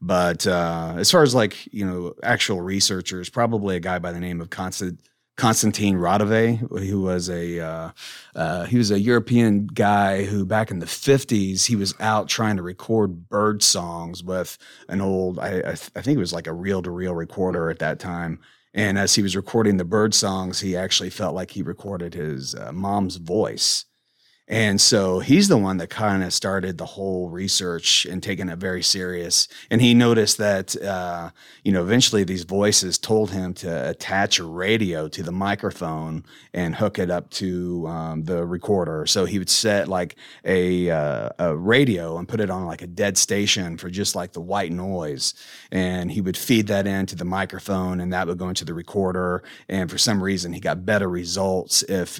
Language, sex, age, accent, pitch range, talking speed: English, male, 30-49, American, 90-100 Hz, 195 wpm